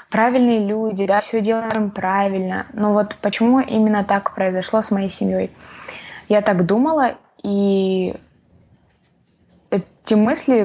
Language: Russian